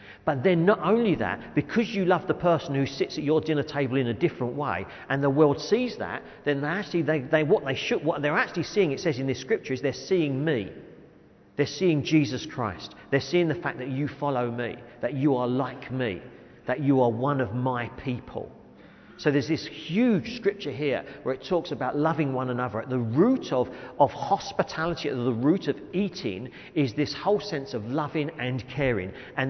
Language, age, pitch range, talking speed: English, 40-59, 110-145 Hz, 210 wpm